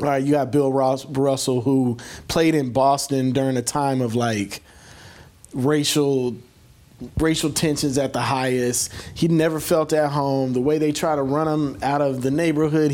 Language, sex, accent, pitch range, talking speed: English, male, American, 130-155 Hz, 160 wpm